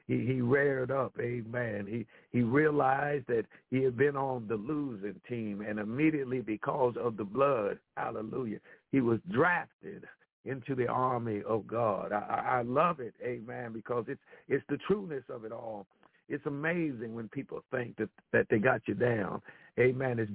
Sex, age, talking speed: male, 60-79, 170 wpm